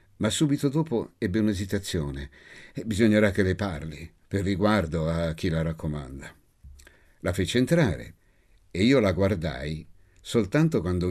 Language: Italian